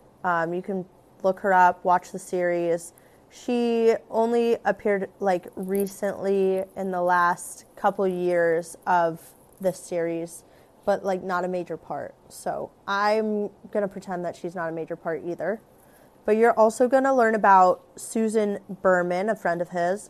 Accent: American